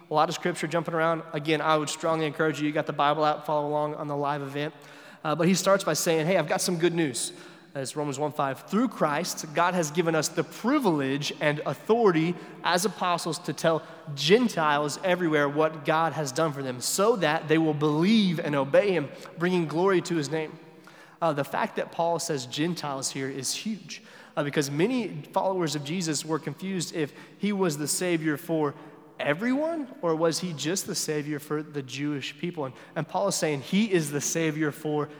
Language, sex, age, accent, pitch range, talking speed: English, male, 30-49, American, 150-175 Hz, 200 wpm